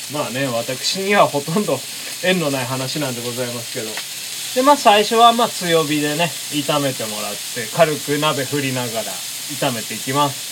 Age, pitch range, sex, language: 20-39, 135-190 Hz, male, Japanese